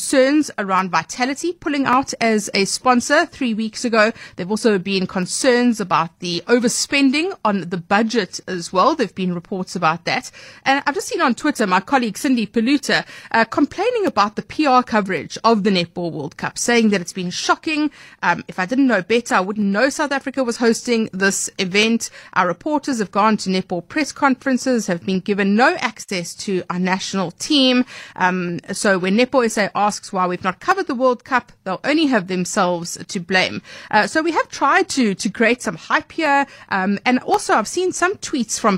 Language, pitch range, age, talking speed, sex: English, 190-265 Hz, 30-49, 195 wpm, female